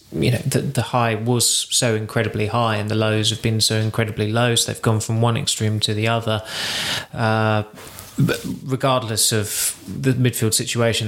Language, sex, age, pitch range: English, male, 20-39, 110-120 Hz